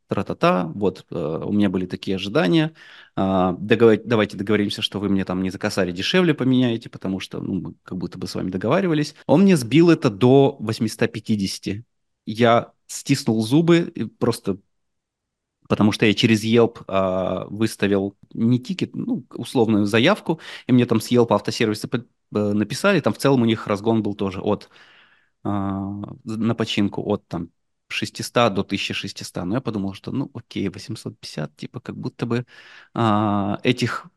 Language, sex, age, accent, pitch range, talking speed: Russian, male, 20-39, native, 100-130 Hz, 155 wpm